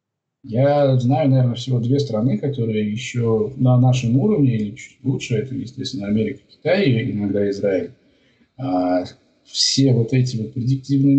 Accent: native